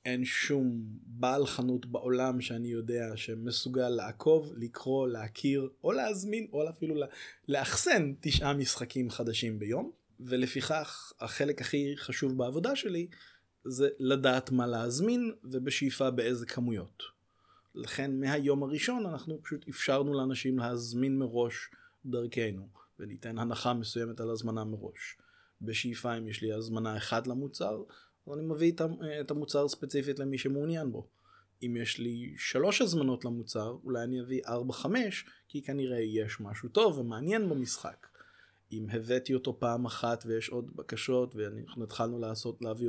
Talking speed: 125 wpm